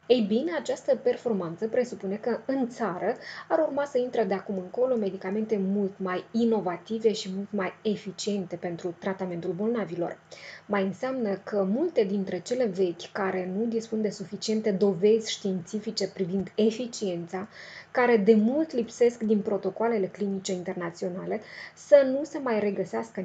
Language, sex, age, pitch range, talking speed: Romanian, female, 20-39, 190-235 Hz, 140 wpm